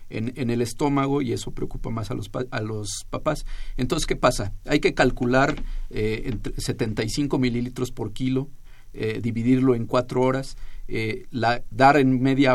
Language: Spanish